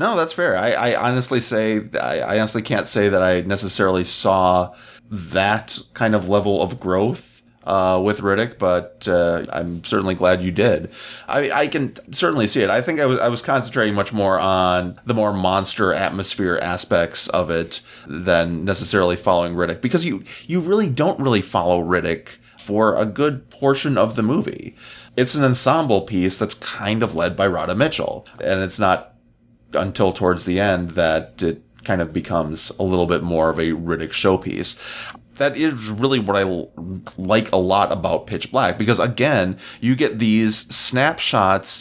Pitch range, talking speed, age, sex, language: 90-120 Hz, 175 wpm, 30-49, male, English